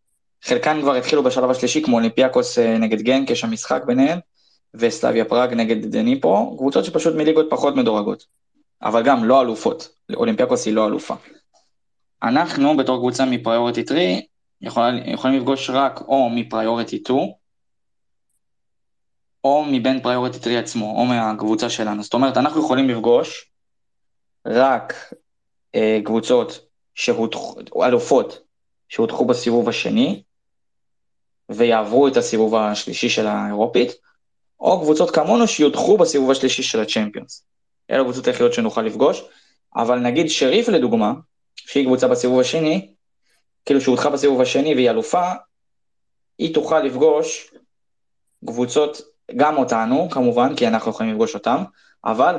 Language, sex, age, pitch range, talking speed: Hebrew, male, 20-39, 115-145 Hz, 125 wpm